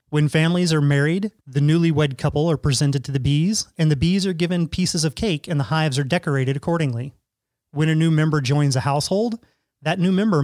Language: English